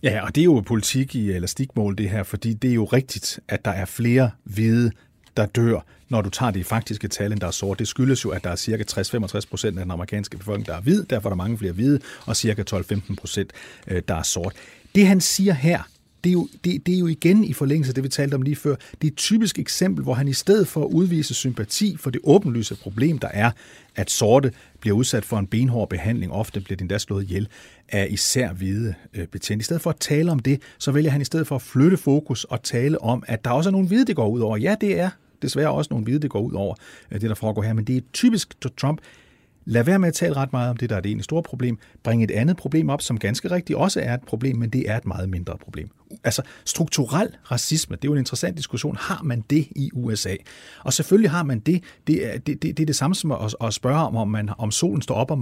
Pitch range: 105-150 Hz